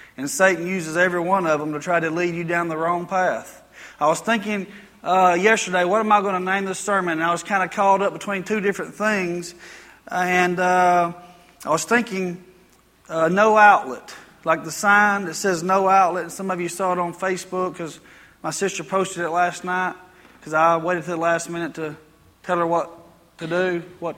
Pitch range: 175-200 Hz